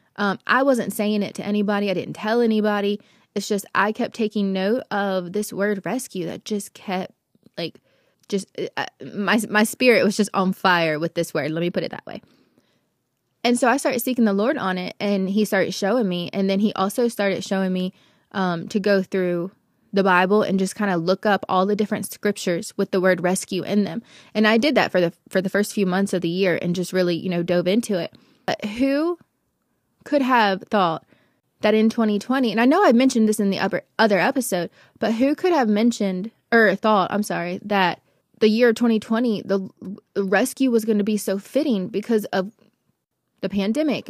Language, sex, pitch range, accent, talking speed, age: English, female, 190-225 Hz, American, 205 wpm, 20-39